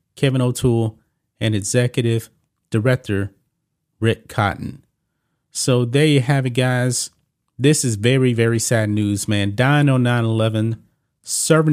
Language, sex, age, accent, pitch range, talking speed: English, male, 30-49, American, 115-145 Hz, 125 wpm